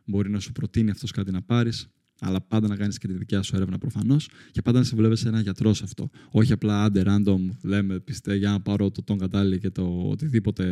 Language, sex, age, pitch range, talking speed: Greek, male, 20-39, 100-130 Hz, 235 wpm